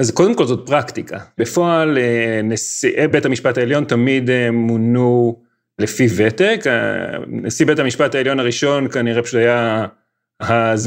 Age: 30-49